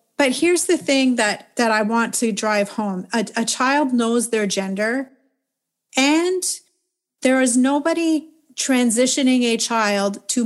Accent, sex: American, female